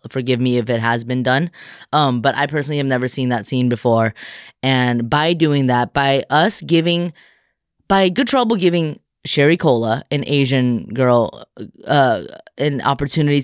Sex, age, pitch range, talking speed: female, 20-39, 130-180 Hz, 160 wpm